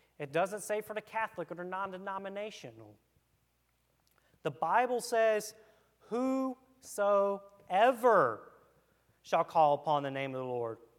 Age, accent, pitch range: 30-49, American, 125-175 Hz